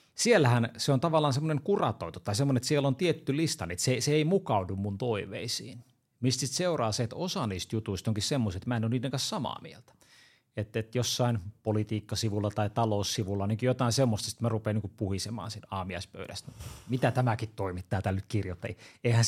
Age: 30-49